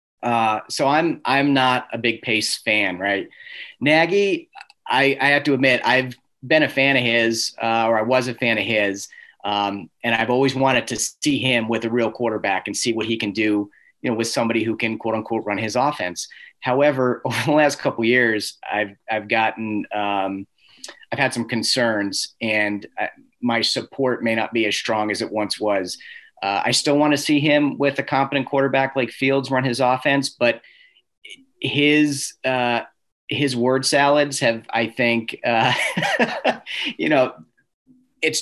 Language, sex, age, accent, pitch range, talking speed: English, male, 30-49, American, 110-140 Hz, 180 wpm